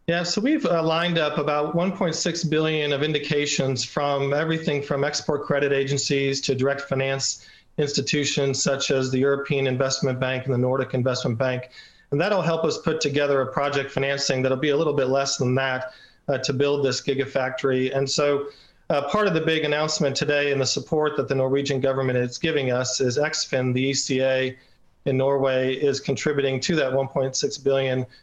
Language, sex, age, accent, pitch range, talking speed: English, male, 40-59, American, 130-150 Hz, 180 wpm